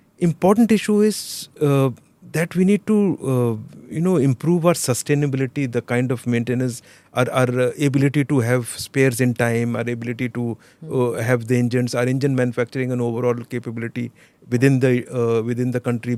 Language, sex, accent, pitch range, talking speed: English, male, Indian, 120-150 Hz, 170 wpm